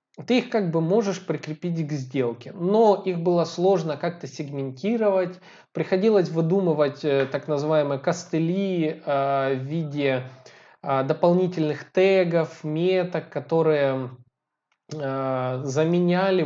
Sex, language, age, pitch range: male, Russian, 20-39, 135-195 Hz